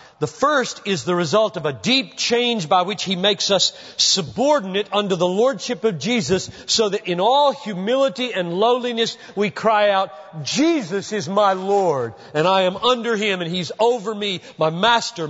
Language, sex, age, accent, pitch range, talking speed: English, male, 40-59, American, 160-235 Hz, 175 wpm